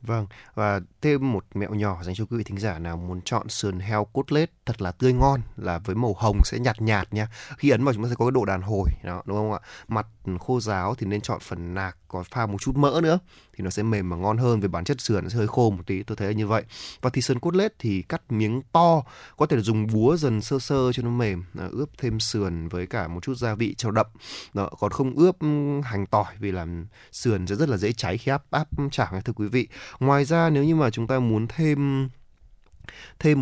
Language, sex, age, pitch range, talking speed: Vietnamese, male, 20-39, 100-130 Hz, 255 wpm